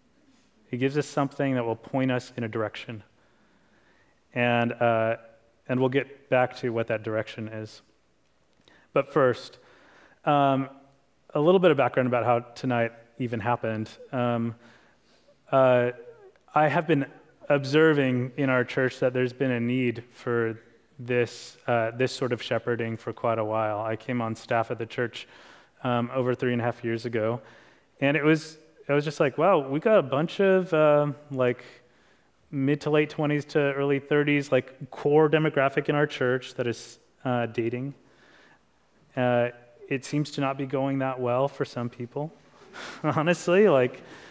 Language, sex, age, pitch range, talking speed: English, male, 30-49, 120-145 Hz, 165 wpm